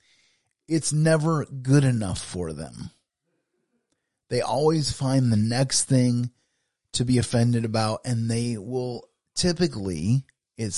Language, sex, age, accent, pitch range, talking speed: English, male, 30-49, American, 115-135 Hz, 115 wpm